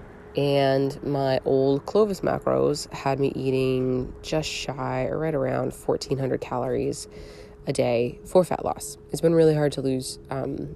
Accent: American